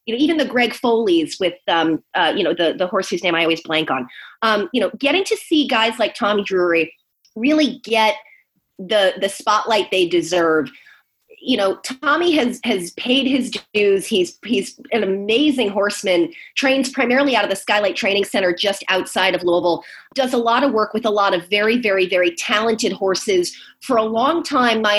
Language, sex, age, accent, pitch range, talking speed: English, female, 30-49, American, 180-235 Hz, 195 wpm